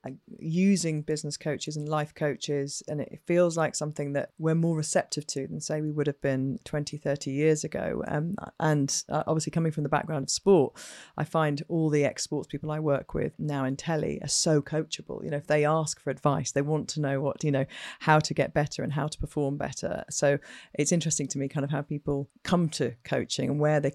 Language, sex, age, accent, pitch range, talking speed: English, female, 40-59, British, 140-160 Hz, 220 wpm